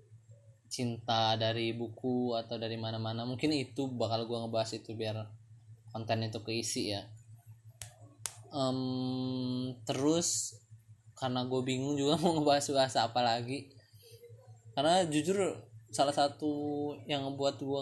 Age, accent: 20-39, native